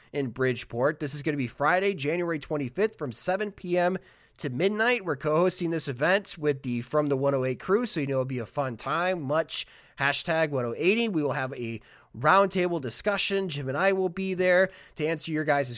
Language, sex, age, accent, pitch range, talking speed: English, male, 30-49, American, 130-185 Hz, 200 wpm